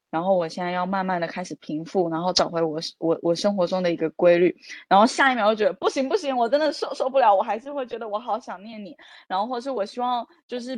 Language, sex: Chinese, female